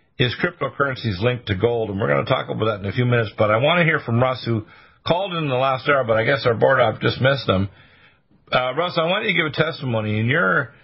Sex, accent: male, American